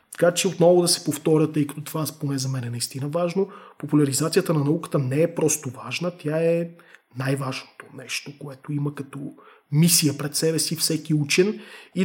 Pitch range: 150-175 Hz